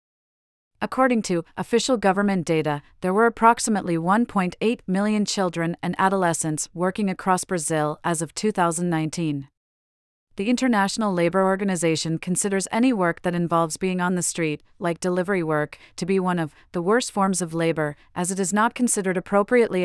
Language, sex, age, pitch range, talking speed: English, female, 40-59, 165-195 Hz, 150 wpm